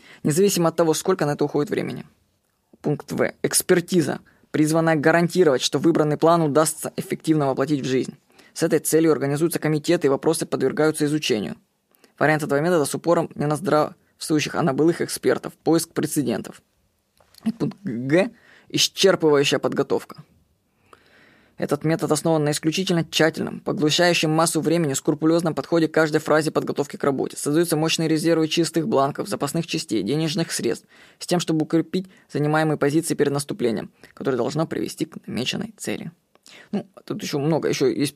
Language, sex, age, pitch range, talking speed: Russian, female, 20-39, 150-175 Hz, 150 wpm